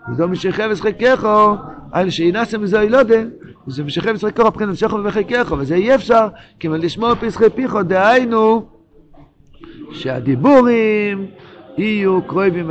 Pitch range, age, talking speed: 150-215 Hz, 50-69, 125 wpm